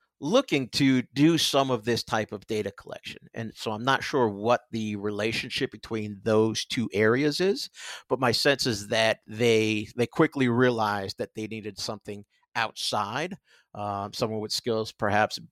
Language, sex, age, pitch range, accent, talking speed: English, male, 50-69, 110-125 Hz, American, 160 wpm